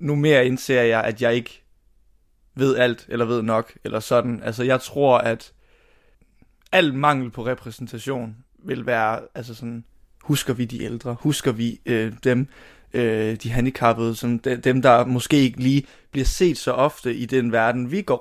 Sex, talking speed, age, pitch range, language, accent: male, 170 wpm, 20-39, 115-130 Hz, Danish, native